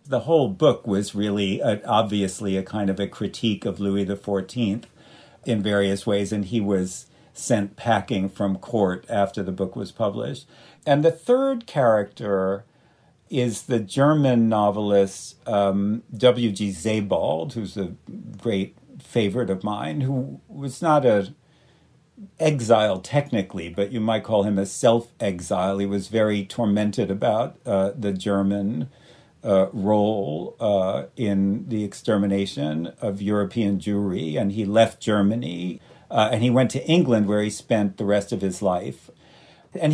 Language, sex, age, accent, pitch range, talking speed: English, male, 50-69, American, 100-120 Hz, 145 wpm